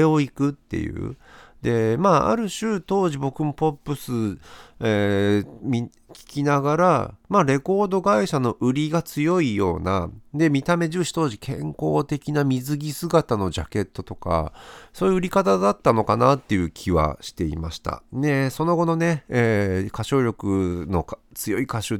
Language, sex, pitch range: Japanese, male, 90-150 Hz